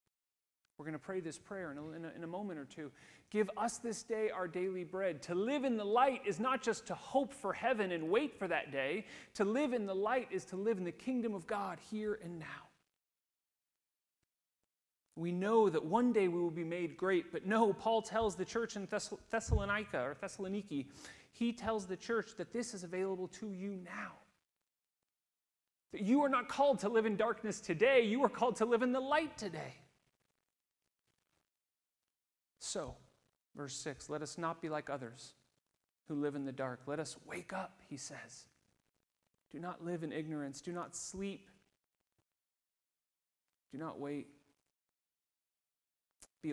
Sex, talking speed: male, 175 wpm